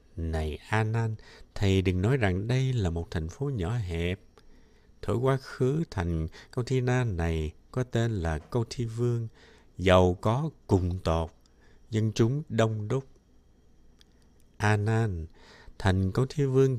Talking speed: 145 wpm